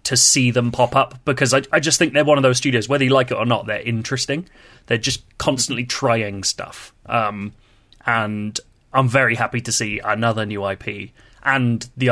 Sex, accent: male, British